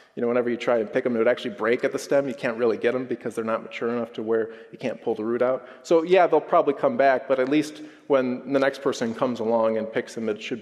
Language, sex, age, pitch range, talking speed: English, male, 30-49, 115-135 Hz, 300 wpm